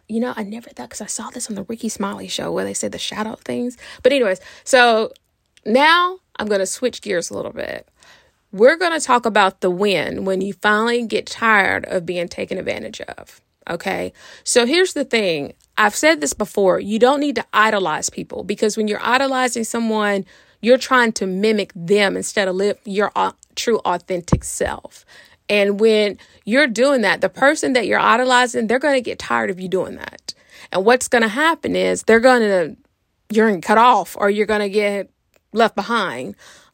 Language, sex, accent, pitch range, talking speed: English, female, American, 195-245 Hz, 200 wpm